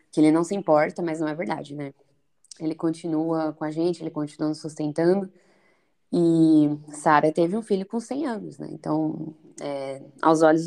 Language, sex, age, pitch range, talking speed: Portuguese, female, 20-39, 155-180 Hz, 180 wpm